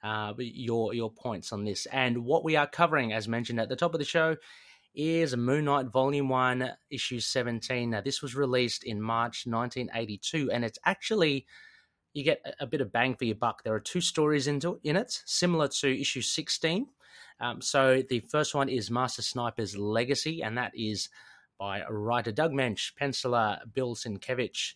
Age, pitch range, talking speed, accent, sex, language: 30-49, 115-145 Hz, 185 wpm, Australian, male, English